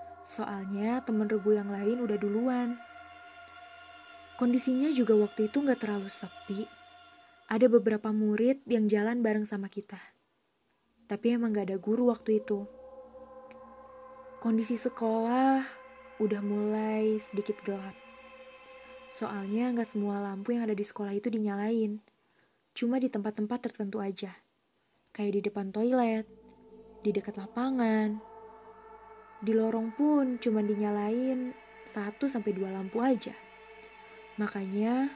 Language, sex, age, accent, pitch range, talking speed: Indonesian, female, 20-39, native, 210-250 Hz, 115 wpm